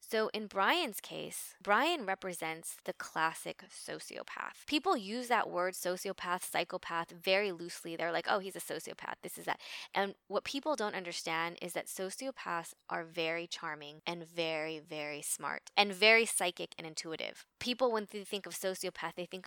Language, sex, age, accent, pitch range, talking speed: English, female, 20-39, American, 170-205 Hz, 165 wpm